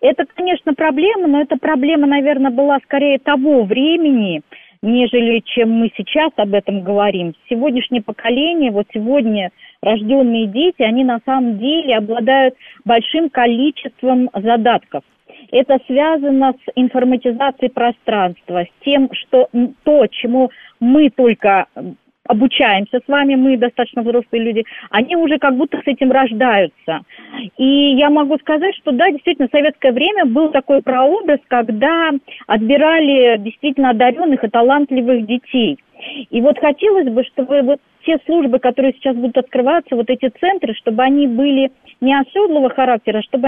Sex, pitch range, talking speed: female, 240-285 Hz, 140 wpm